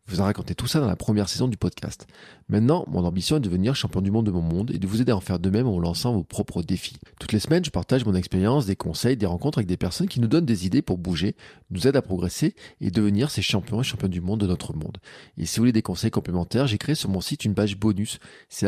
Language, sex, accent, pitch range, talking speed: French, male, French, 95-125 Hz, 285 wpm